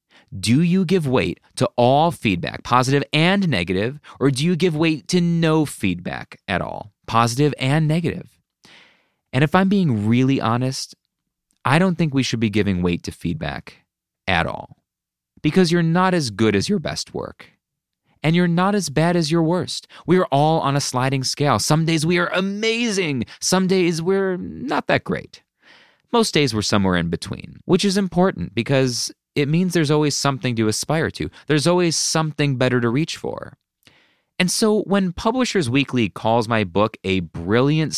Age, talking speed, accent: 30-49, 175 wpm, American